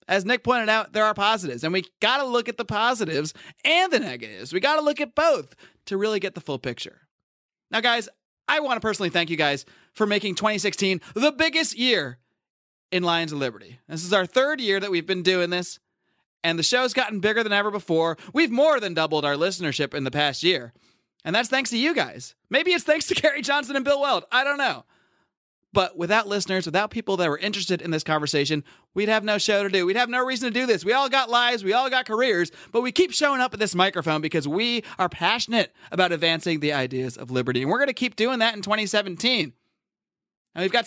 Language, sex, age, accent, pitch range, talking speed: English, male, 30-49, American, 170-255 Hz, 230 wpm